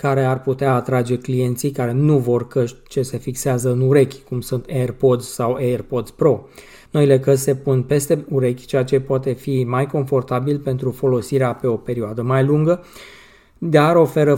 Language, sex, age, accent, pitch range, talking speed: Romanian, male, 20-39, native, 125-140 Hz, 170 wpm